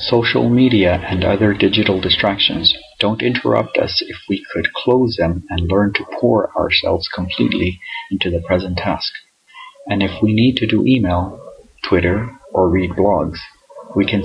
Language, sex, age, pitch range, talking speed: English, male, 40-59, 90-110 Hz, 155 wpm